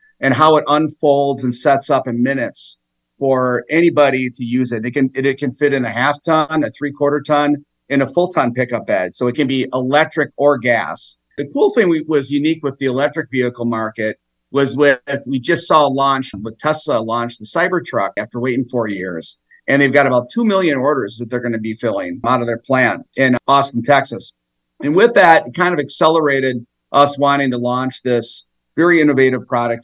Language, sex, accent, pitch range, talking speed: English, male, American, 125-150 Hz, 205 wpm